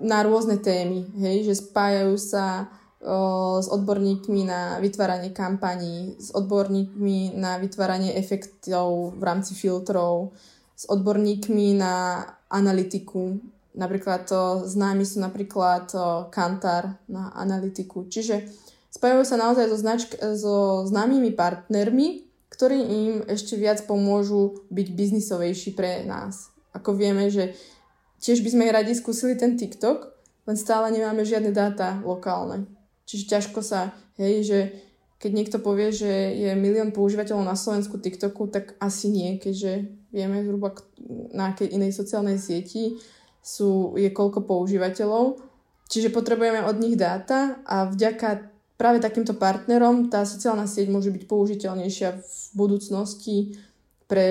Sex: female